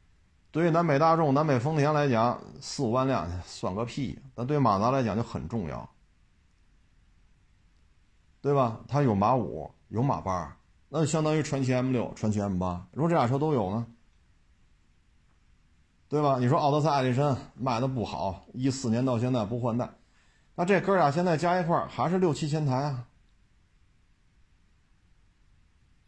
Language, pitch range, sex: Chinese, 85-135 Hz, male